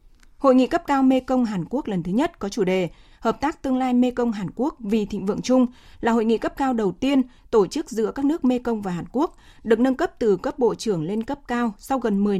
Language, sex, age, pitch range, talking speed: Vietnamese, female, 20-39, 210-265 Hz, 245 wpm